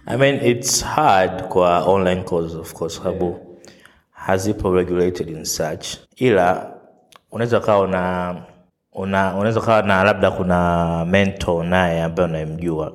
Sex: male